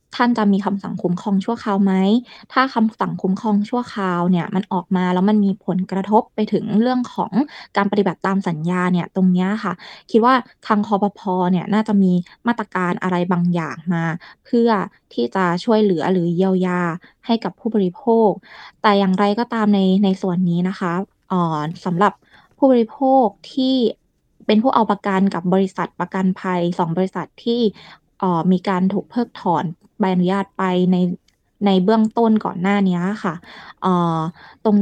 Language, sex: Thai, female